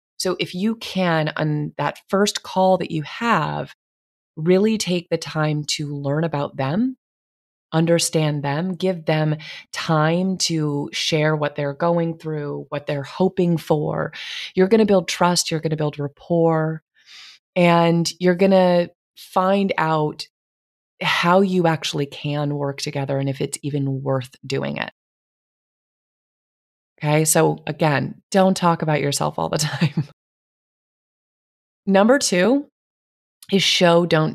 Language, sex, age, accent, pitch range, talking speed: English, female, 30-49, American, 145-185 Hz, 135 wpm